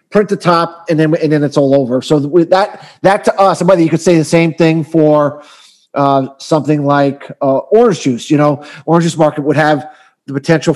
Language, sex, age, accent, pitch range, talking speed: English, male, 40-59, American, 145-170 Hz, 225 wpm